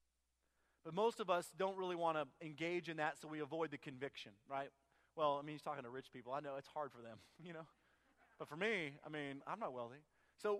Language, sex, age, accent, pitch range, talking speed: English, male, 40-59, American, 140-200 Hz, 240 wpm